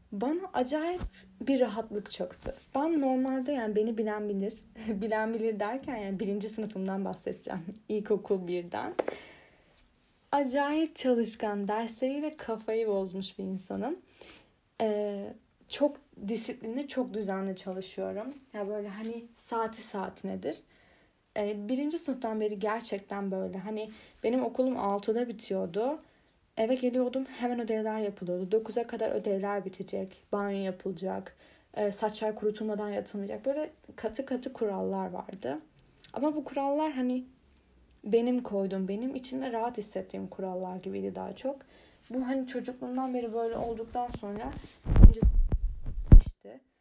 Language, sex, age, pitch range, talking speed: Turkish, female, 10-29, 200-255 Hz, 120 wpm